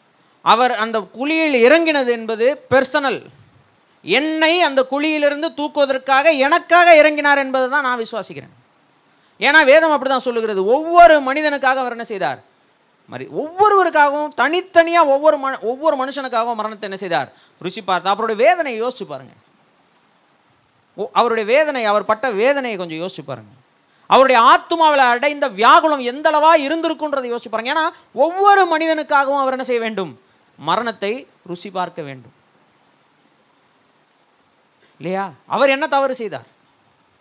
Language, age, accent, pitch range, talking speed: Tamil, 30-49, native, 195-300 Hz, 120 wpm